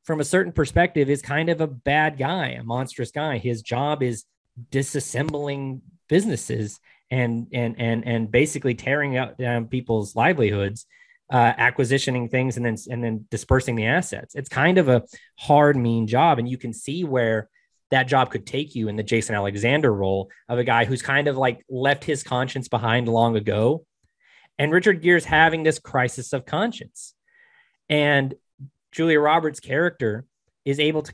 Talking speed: 170 wpm